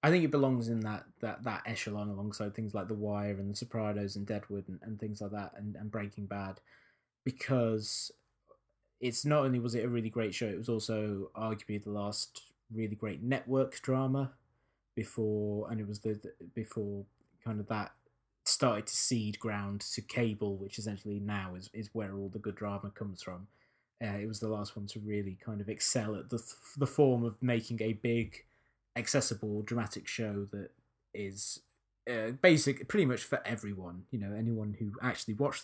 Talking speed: 190 wpm